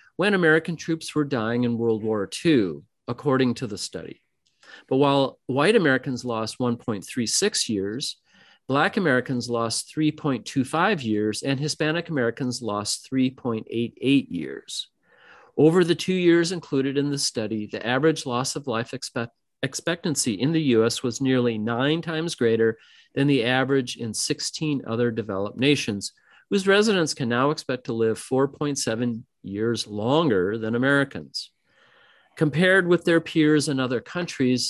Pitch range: 115-155 Hz